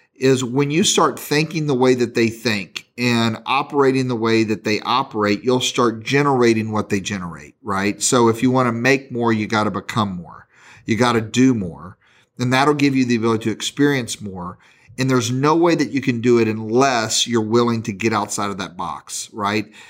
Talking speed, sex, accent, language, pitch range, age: 200 wpm, male, American, English, 110-130 Hz, 40-59